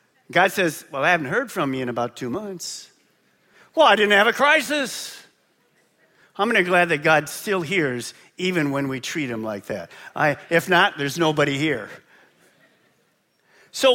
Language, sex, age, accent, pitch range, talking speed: English, male, 50-69, American, 175-260 Hz, 170 wpm